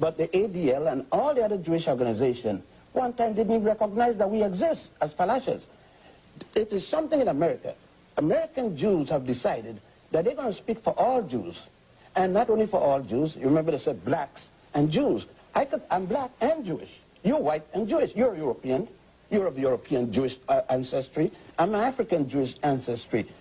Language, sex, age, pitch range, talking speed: English, male, 60-79, 135-220 Hz, 175 wpm